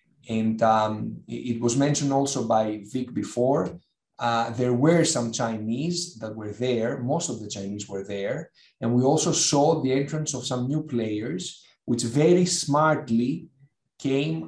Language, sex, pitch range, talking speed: English, male, 110-140 Hz, 155 wpm